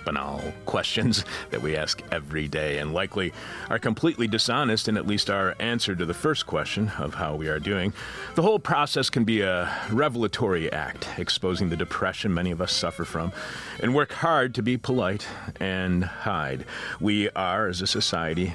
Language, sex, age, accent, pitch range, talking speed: English, male, 40-59, American, 80-115 Hz, 180 wpm